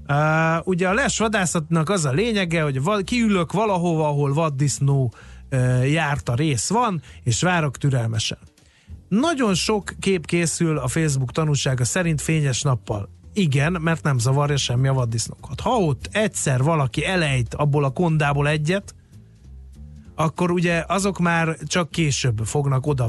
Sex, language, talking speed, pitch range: male, Hungarian, 140 wpm, 130-165 Hz